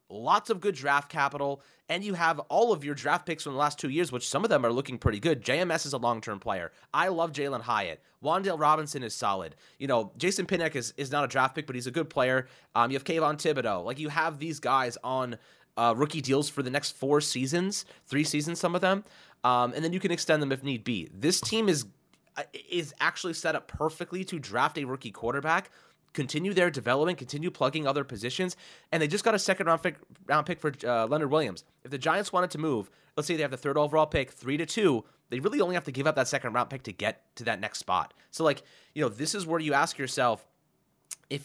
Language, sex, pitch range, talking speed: English, male, 125-160 Hz, 240 wpm